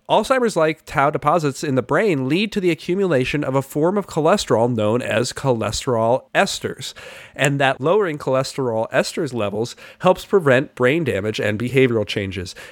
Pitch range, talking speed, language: 115-145 Hz, 150 wpm, English